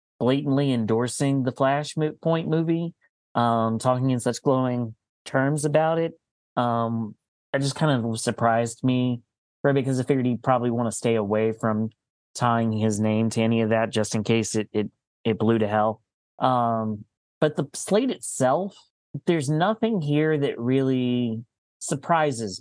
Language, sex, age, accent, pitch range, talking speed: English, male, 30-49, American, 115-140 Hz, 155 wpm